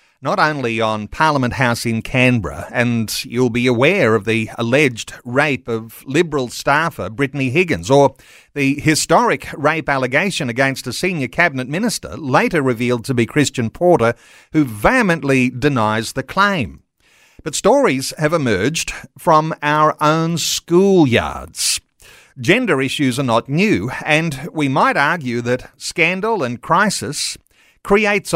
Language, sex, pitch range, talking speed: English, male, 125-165 Hz, 135 wpm